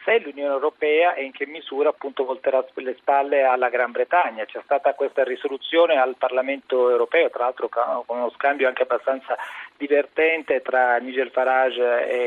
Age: 40-59